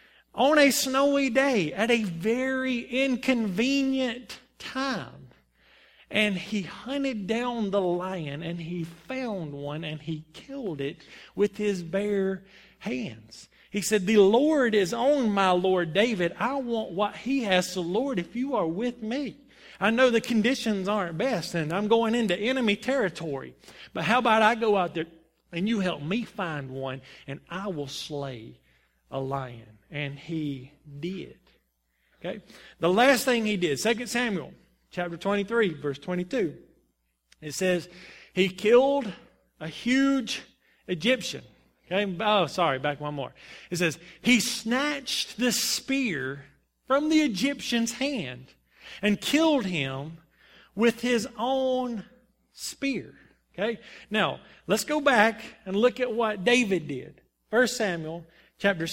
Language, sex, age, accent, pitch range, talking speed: English, male, 40-59, American, 165-245 Hz, 145 wpm